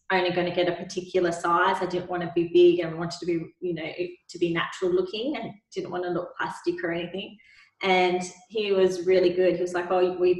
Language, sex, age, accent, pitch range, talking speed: English, female, 20-39, Australian, 180-215 Hz, 240 wpm